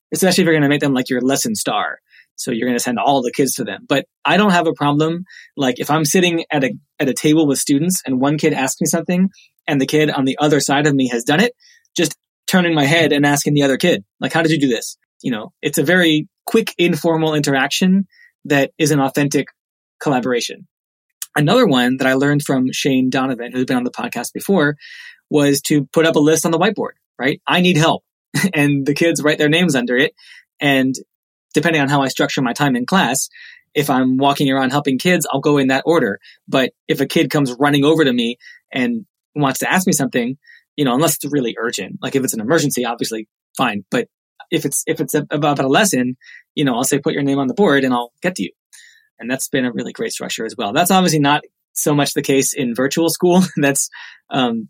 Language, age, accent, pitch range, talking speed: English, 20-39, American, 135-170 Hz, 235 wpm